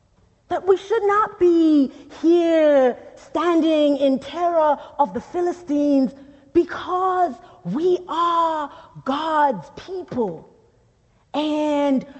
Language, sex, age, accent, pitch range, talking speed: English, female, 40-59, American, 190-280 Hz, 90 wpm